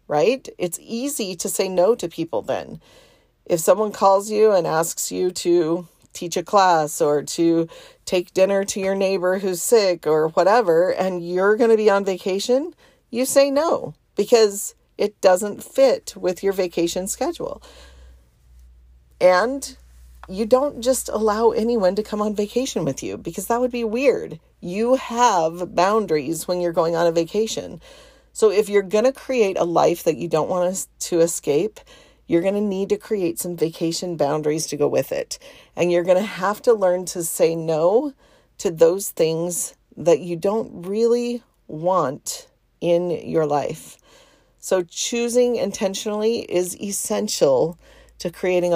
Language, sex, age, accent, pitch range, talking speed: English, female, 40-59, American, 170-235 Hz, 160 wpm